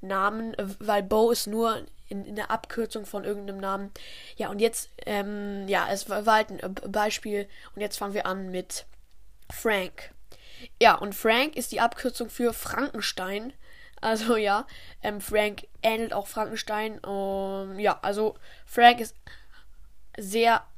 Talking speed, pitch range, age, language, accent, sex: 145 wpm, 200-235 Hz, 10-29, German, German, female